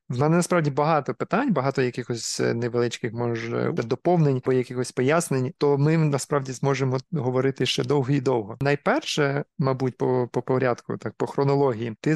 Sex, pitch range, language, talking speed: male, 125-145 Hz, Ukrainian, 155 wpm